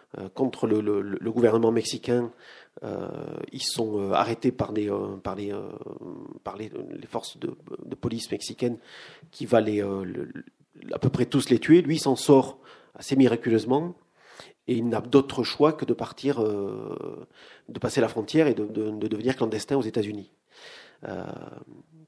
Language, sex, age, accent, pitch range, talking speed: French, male, 40-59, French, 110-135 Hz, 150 wpm